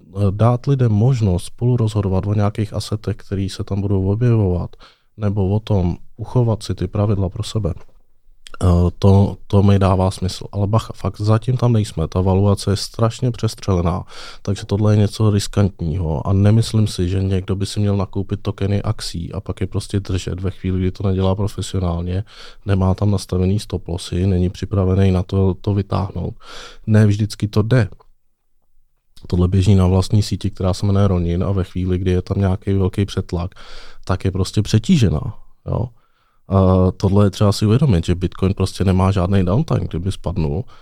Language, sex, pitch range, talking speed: Czech, male, 95-105 Hz, 165 wpm